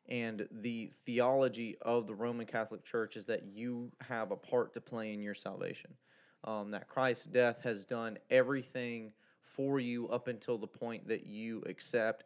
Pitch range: 105-120 Hz